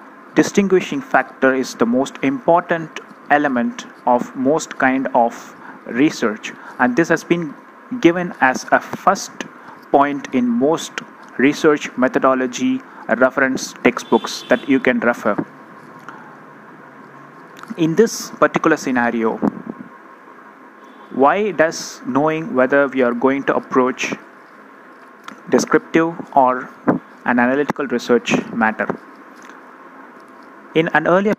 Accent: native